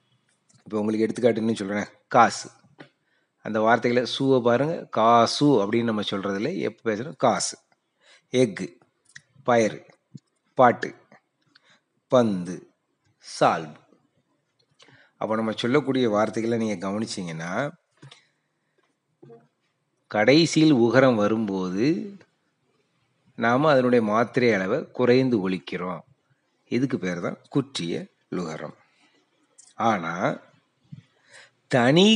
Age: 30-49